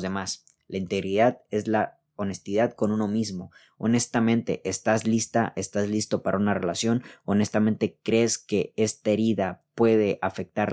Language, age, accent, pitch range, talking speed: Spanish, 20-39, Mexican, 105-130 Hz, 135 wpm